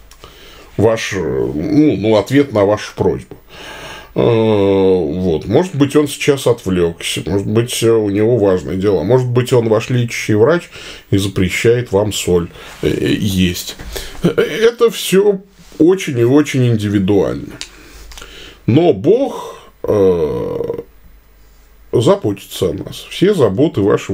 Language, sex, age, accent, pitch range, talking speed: Russian, male, 20-39, native, 100-155 Hz, 120 wpm